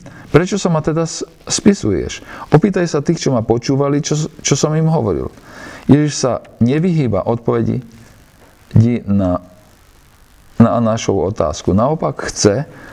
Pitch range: 95-140 Hz